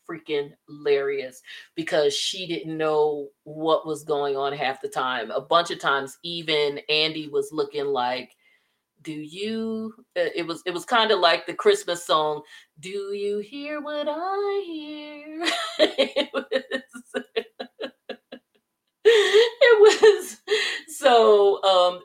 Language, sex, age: English, female, 30-49